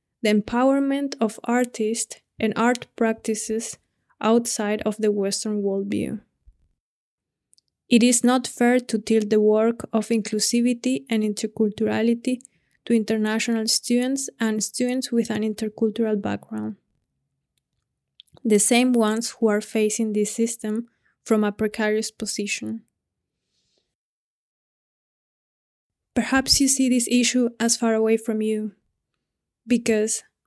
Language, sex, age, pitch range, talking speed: German, female, 20-39, 215-235 Hz, 110 wpm